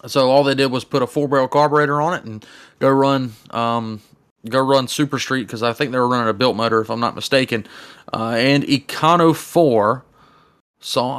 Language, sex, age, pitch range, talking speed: English, male, 30-49, 120-140 Hz, 205 wpm